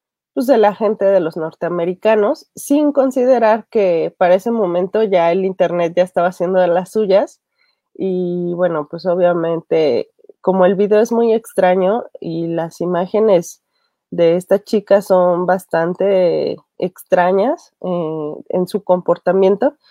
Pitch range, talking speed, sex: 170-215 Hz, 135 wpm, female